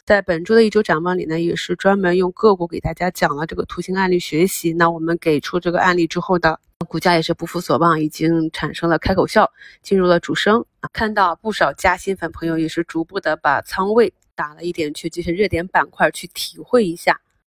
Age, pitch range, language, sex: 30-49, 165-195 Hz, Chinese, female